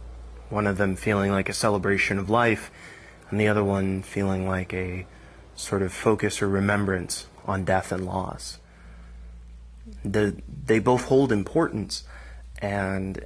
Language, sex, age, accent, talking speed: English, male, 20-39, American, 140 wpm